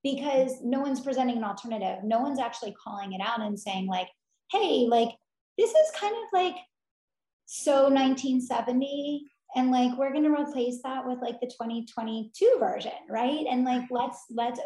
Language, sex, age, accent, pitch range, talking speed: English, female, 20-39, American, 210-255 Hz, 165 wpm